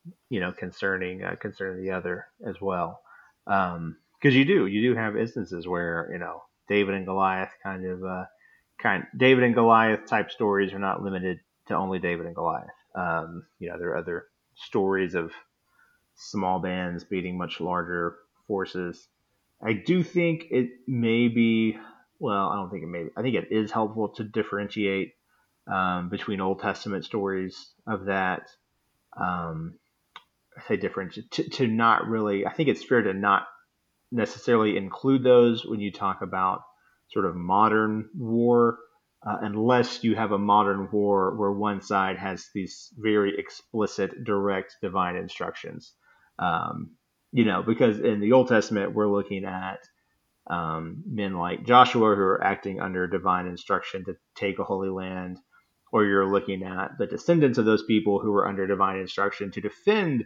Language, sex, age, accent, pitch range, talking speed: English, male, 30-49, American, 95-110 Hz, 165 wpm